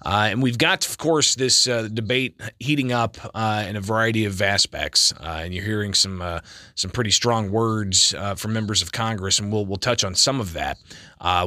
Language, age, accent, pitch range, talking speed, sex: English, 30-49, American, 100-130 Hz, 215 wpm, male